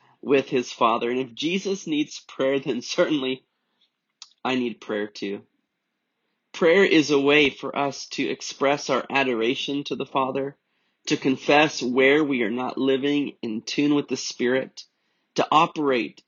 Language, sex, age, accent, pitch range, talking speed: English, male, 30-49, American, 130-155 Hz, 150 wpm